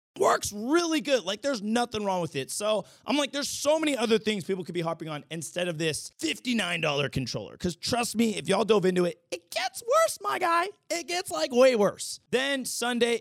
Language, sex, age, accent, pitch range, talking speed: English, male, 30-49, American, 170-275 Hz, 215 wpm